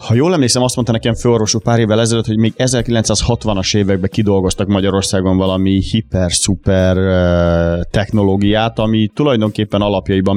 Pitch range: 95-110 Hz